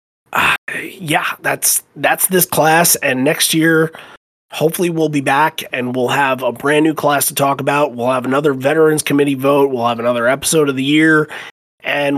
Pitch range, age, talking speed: 140-185 Hz, 30-49, 180 wpm